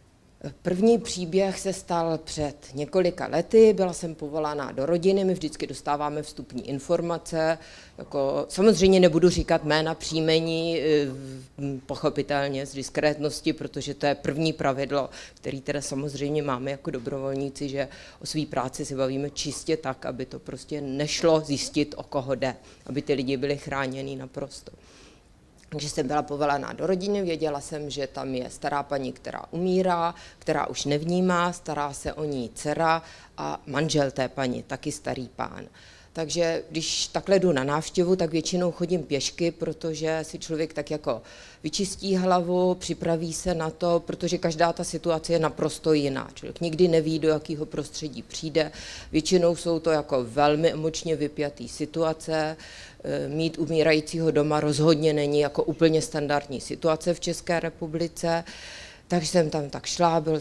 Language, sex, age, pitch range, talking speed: Czech, female, 30-49, 145-170 Hz, 150 wpm